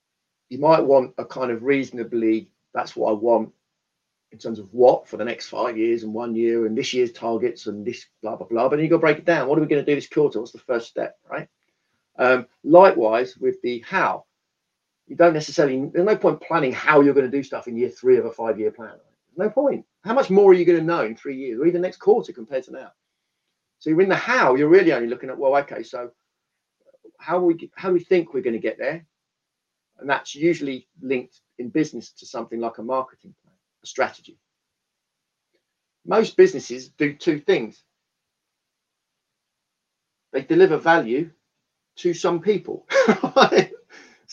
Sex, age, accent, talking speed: male, 40-59, British, 200 wpm